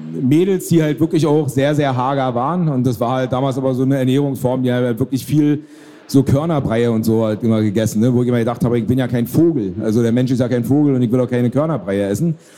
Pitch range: 120-145 Hz